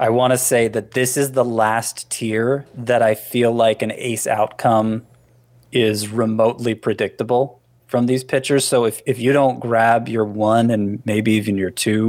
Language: English